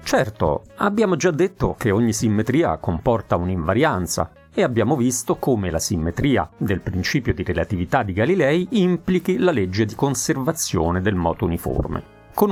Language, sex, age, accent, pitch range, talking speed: Italian, male, 40-59, native, 90-140 Hz, 145 wpm